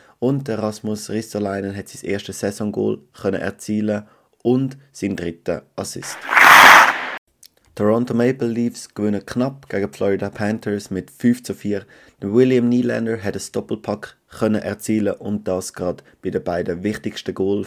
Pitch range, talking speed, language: 95-110 Hz, 135 wpm, German